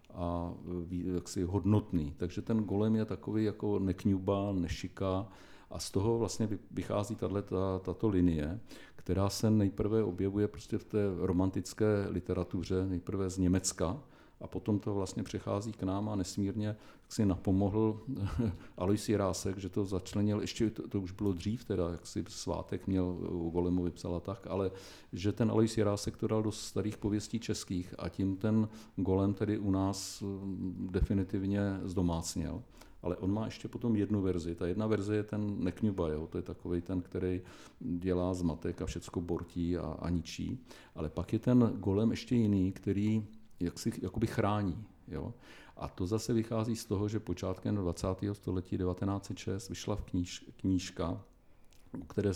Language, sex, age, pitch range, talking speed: Czech, male, 50-69, 90-105 Hz, 155 wpm